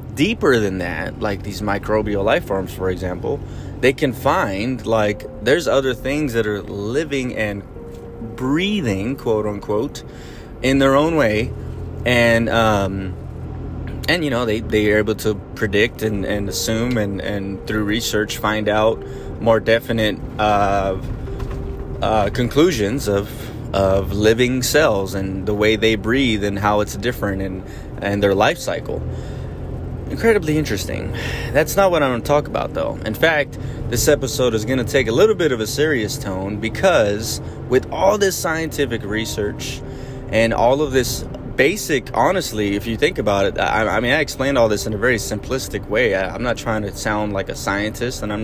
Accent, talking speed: American, 170 wpm